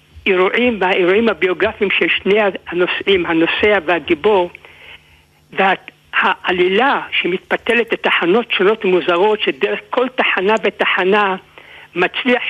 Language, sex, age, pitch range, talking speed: Hebrew, male, 60-79, 180-230 Hz, 85 wpm